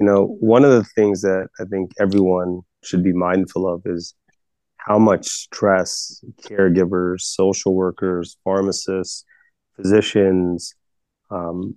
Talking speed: 120 wpm